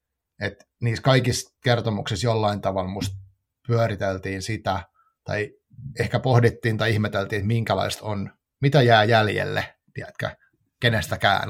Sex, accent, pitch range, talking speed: male, native, 100-120 Hz, 115 wpm